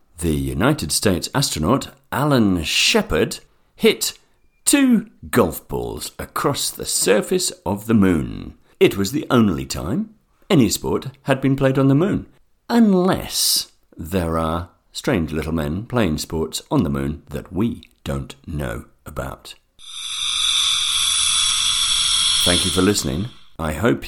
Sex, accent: male, British